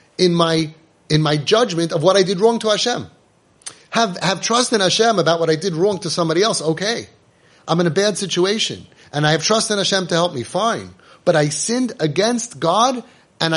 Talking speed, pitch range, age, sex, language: 210 wpm, 155-195 Hz, 30-49, male, English